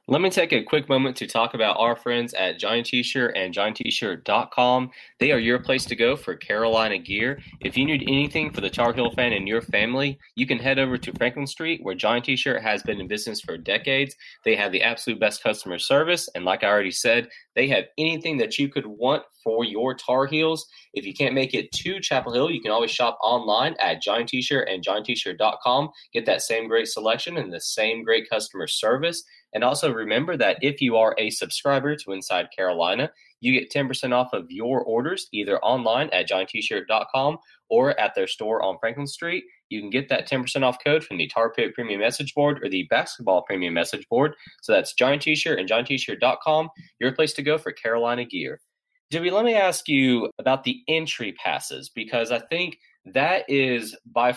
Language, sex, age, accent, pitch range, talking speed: English, male, 20-39, American, 115-150 Hz, 200 wpm